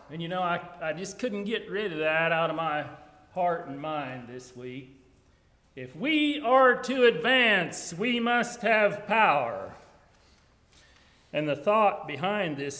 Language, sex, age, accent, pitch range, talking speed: English, male, 40-59, American, 130-170 Hz, 155 wpm